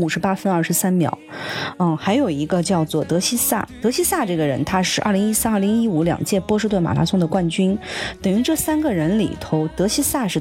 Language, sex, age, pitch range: Chinese, female, 30-49, 150-190 Hz